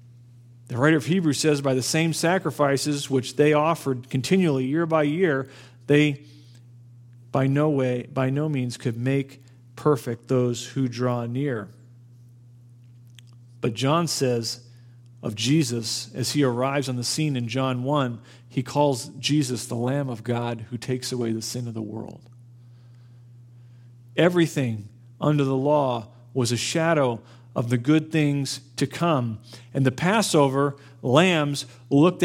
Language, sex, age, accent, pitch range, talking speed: English, male, 40-59, American, 120-145 Hz, 145 wpm